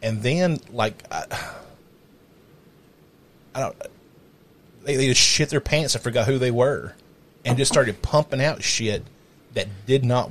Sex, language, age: male, English, 30-49